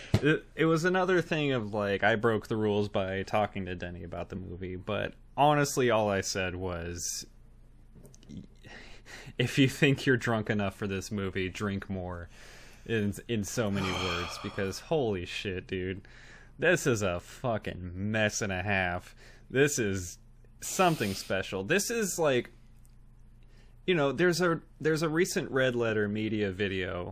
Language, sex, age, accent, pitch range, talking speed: English, male, 20-39, American, 95-120 Hz, 150 wpm